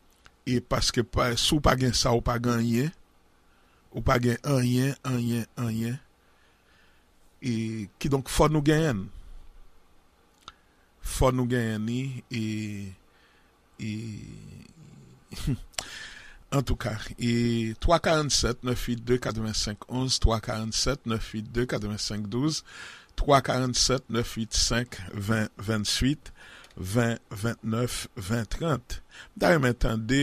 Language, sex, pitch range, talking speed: English, male, 110-125 Hz, 110 wpm